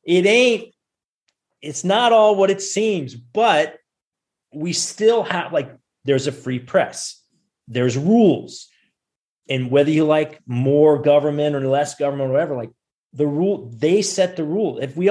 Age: 30-49